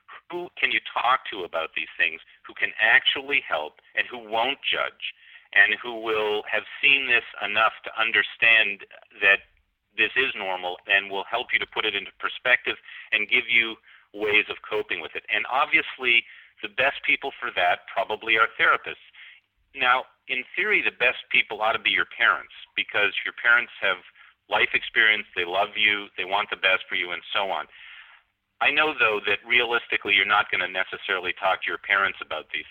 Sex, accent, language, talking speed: male, American, English, 185 wpm